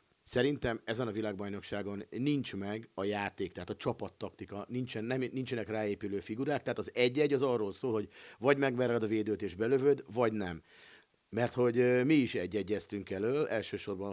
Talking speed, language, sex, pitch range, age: 160 wpm, Hungarian, male, 100-125 Hz, 50-69